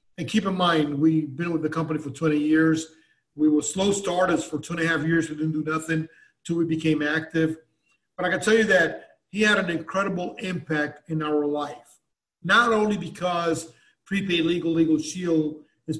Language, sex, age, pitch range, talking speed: English, male, 40-59, 160-195 Hz, 195 wpm